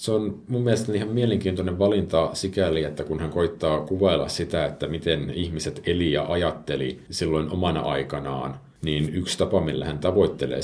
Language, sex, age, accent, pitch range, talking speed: Finnish, male, 50-69, native, 70-85 Hz, 165 wpm